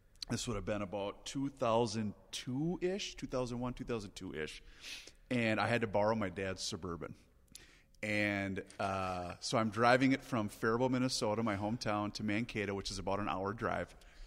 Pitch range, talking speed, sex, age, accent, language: 100-125 Hz, 145 wpm, male, 30-49, American, English